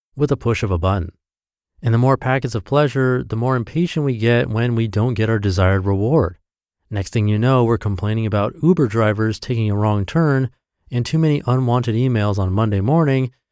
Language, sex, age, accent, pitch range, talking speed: English, male, 30-49, American, 90-130 Hz, 200 wpm